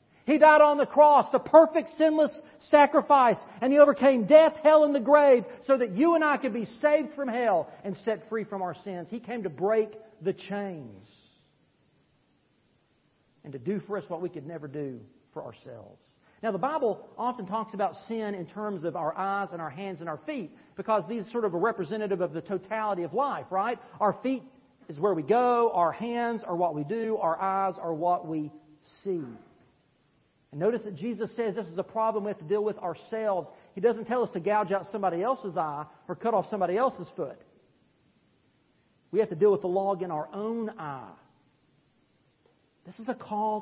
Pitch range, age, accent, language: 185-240 Hz, 40-59, American, English